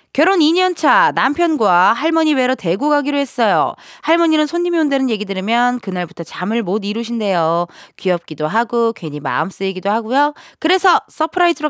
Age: 20-39